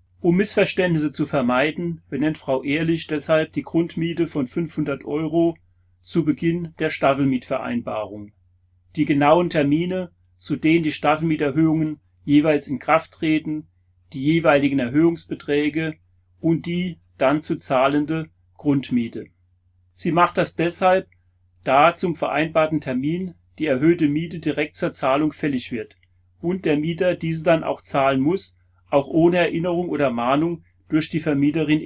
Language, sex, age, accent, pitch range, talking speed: German, male, 40-59, German, 120-165 Hz, 130 wpm